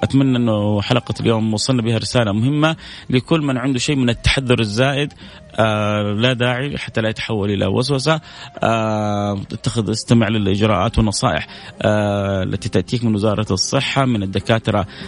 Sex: male